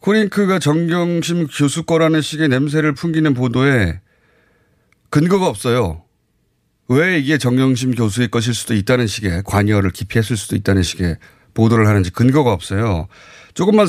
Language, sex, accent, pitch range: Korean, male, native, 100-160 Hz